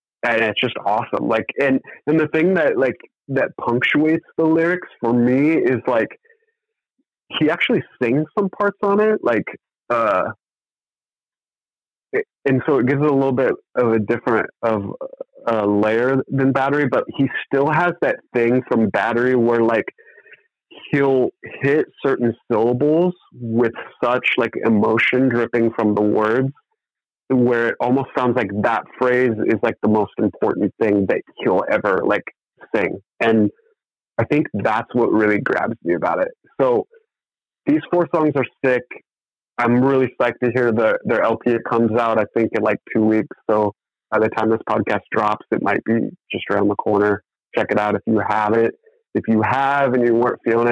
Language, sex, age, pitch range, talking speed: English, male, 30-49, 110-155 Hz, 170 wpm